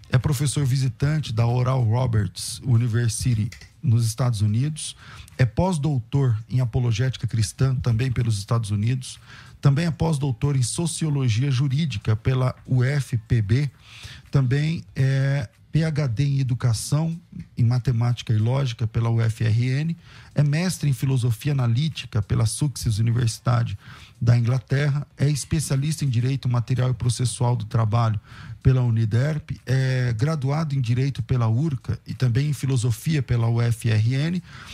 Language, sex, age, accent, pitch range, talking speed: Portuguese, male, 40-59, Brazilian, 115-140 Hz, 125 wpm